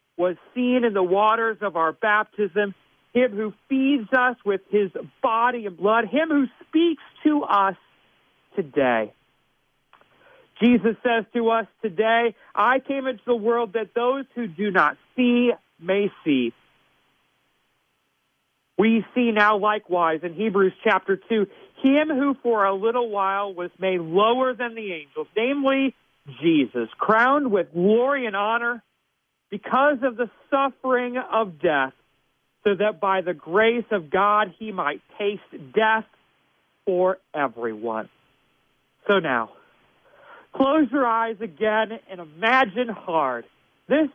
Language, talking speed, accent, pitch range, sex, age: English, 130 wpm, American, 185-240 Hz, male, 50-69